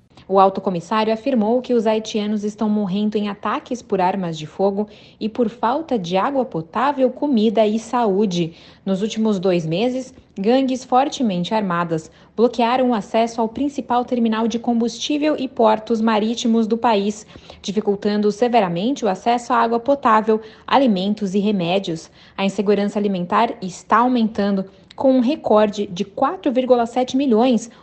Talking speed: 140 wpm